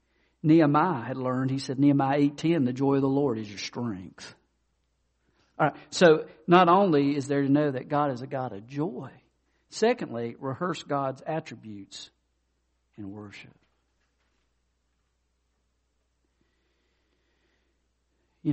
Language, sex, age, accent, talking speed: English, male, 50-69, American, 125 wpm